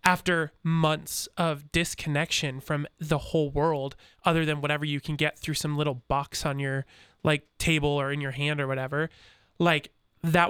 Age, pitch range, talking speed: 20-39, 155-185 Hz, 170 wpm